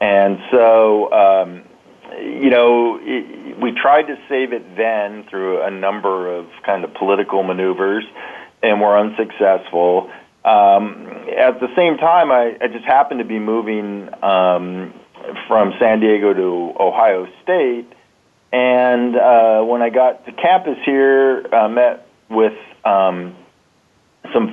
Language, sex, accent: English, male, American